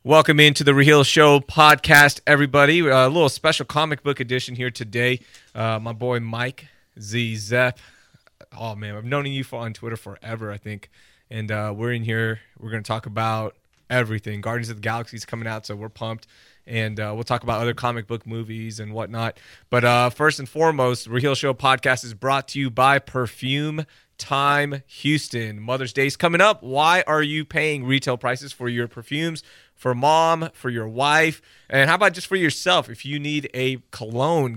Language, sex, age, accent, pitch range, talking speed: English, male, 30-49, American, 115-145 Hz, 190 wpm